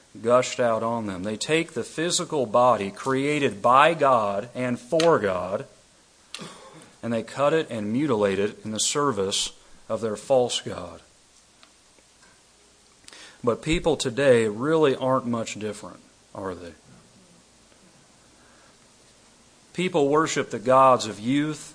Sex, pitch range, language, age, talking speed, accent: male, 110-140 Hz, English, 40-59, 120 wpm, American